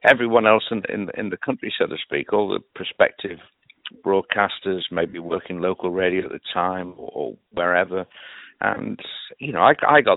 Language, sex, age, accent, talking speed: English, male, 60-79, British, 170 wpm